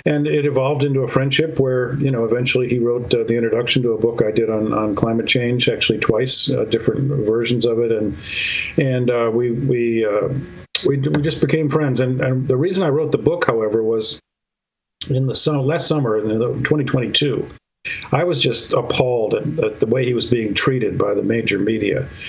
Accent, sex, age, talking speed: American, male, 50-69, 200 wpm